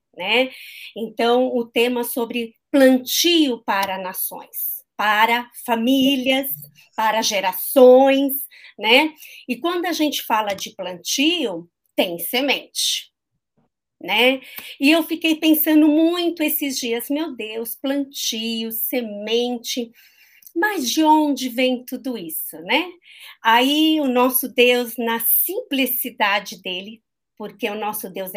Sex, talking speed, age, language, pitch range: female, 110 wpm, 50-69, Portuguese, 230-320 Hz